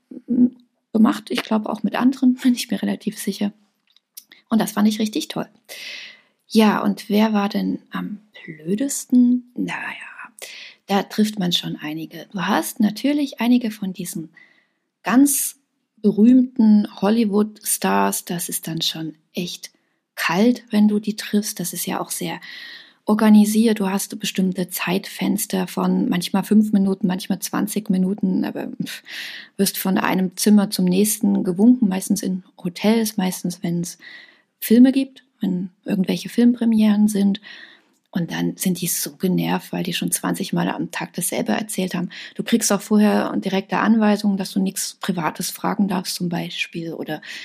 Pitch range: 190-230 Hz